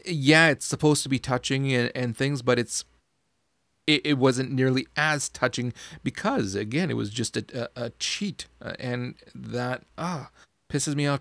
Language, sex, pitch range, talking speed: English, male, 120-155 Hz, 170 wpm